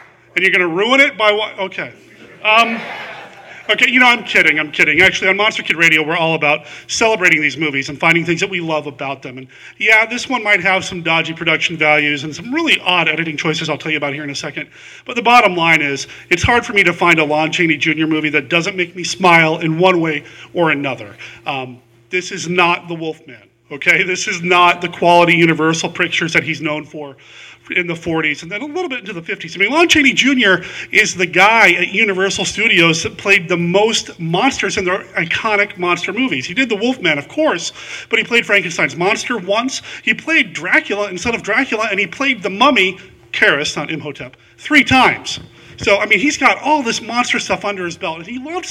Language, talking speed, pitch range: English, 220 wpm, 160-215 Hz